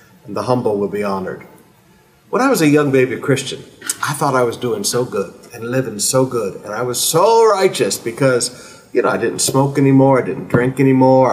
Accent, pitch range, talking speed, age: American, 120-155 Hz, 210 wpm, 50-69